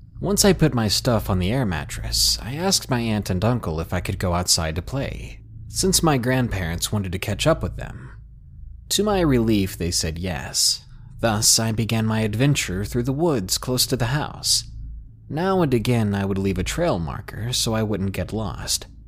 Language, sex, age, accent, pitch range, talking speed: English, male, 30-49, American, 100-135 Hz, 200 wpm